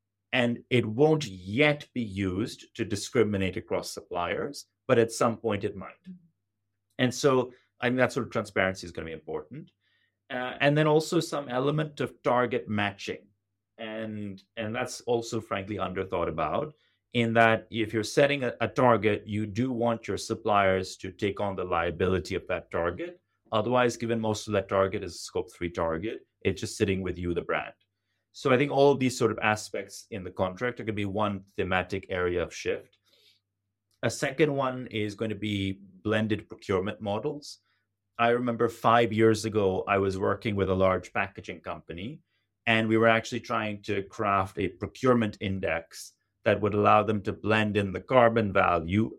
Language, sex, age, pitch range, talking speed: English, male, 30-49, 100-120 Hz, 180 wpm